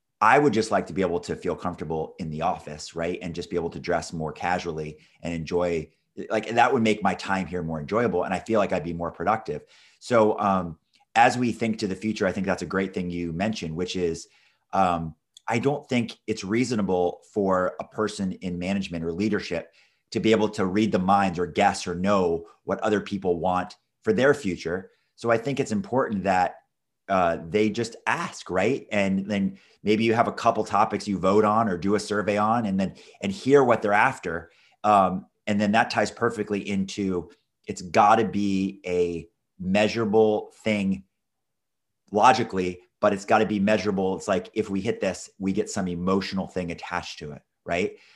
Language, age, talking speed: English, 30-49, 195 wpm